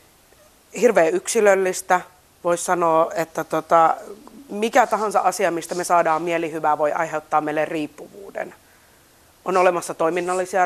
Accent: native